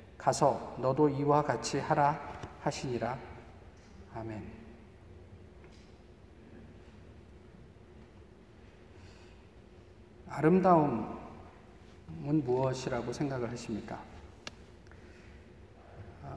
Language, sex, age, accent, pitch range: Korean, male, 40-59, native, 95-150 Hz